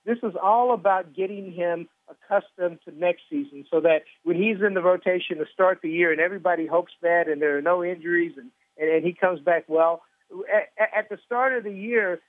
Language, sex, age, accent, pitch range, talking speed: English, male, 50-69, American, 165-200 Hz, 210 wpm